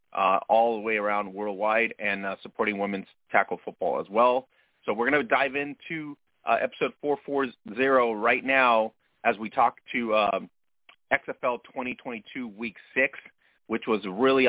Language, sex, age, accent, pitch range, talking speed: English, male, 30-49, American, 105-125 Hz, 155 wpm